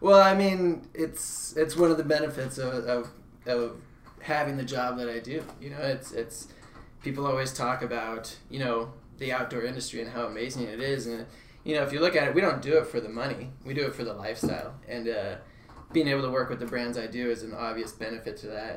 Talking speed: 235 wpm